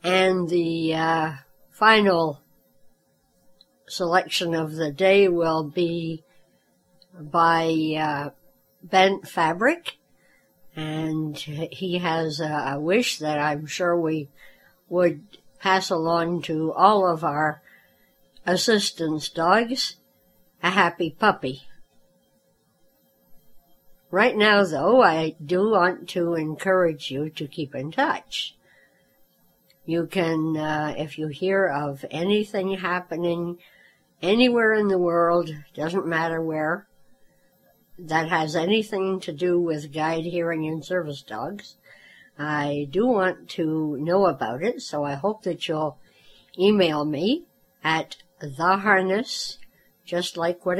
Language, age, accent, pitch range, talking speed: English, 60-79, American, 155-185 Hz, 110 wpm